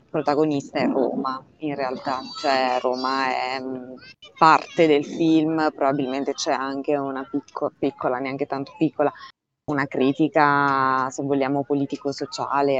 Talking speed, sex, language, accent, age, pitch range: 115 wpm, female, Italian, native, 20-39, 135-150 Hz